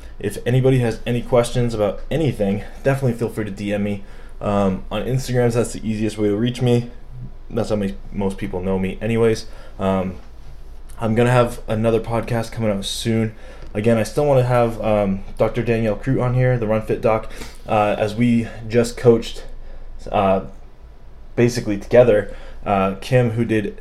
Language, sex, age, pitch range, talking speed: English, male, 20-39, 100-115 Hz, 165 wpm